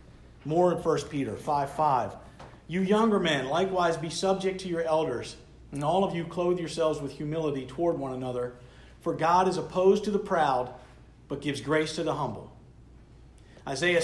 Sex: male